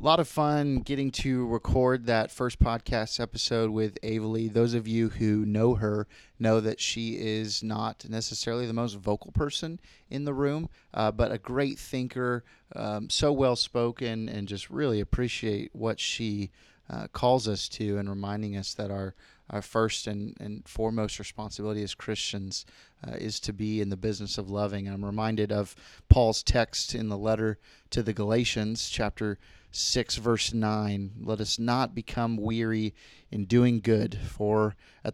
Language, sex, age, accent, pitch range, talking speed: English, male, 30-49, American, 105-115 Hz, 170 wpm